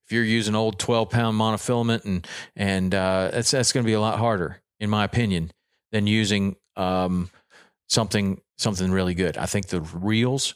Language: English